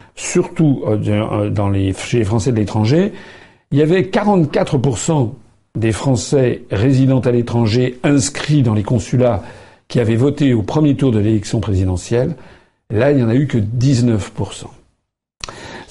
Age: 50-69